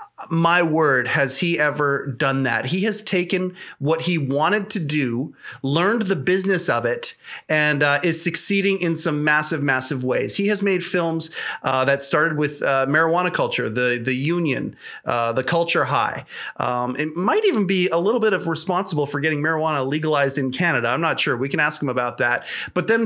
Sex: male